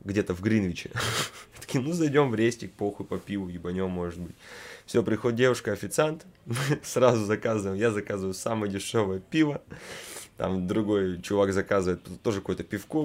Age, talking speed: 20-39, 140 wpm